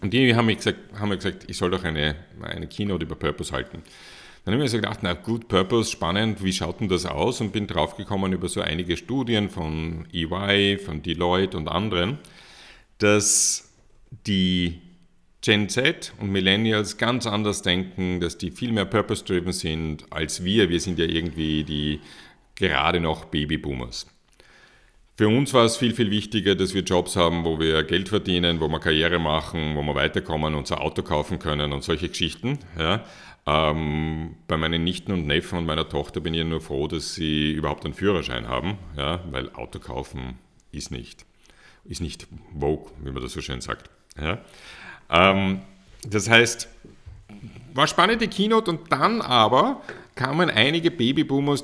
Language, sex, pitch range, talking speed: German, male, 80-105 Hz, 170 wpm